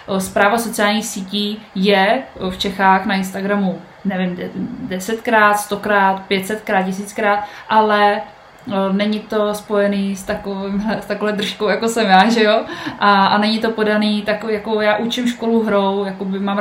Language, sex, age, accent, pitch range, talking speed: Czech, female, 20-39, native, 195-215 Hz, 140 wpm